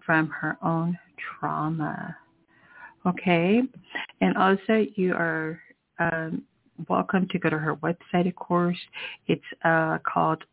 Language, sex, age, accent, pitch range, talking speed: English, female, 50-69, American, 165-205 Hz, 120 wpm